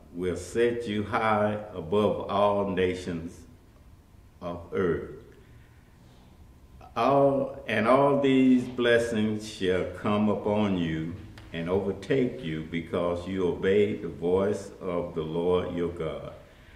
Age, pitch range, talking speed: 60-79, 90-110 Hz, 110 wpm